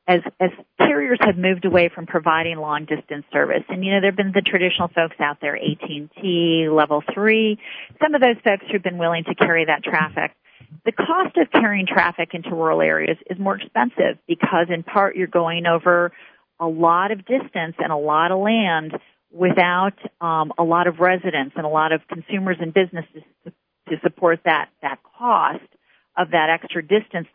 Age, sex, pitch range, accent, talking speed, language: 40-59, female, 160-195 Hz, American, 185 wpm, English